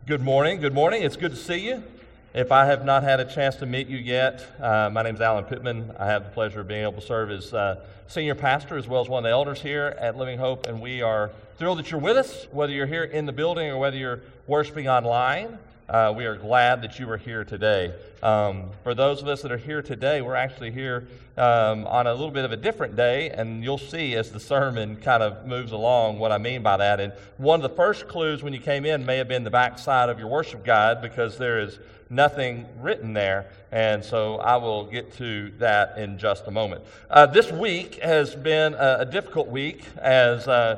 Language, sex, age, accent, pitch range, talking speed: English, male, 40-59, American, 115-145 Hz, 235 wpm